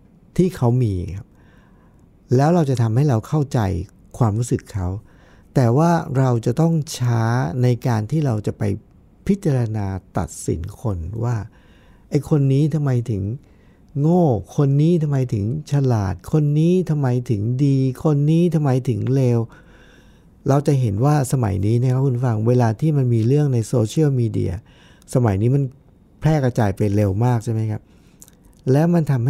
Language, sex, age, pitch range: Thai, male, 60-79, 110-145 Hz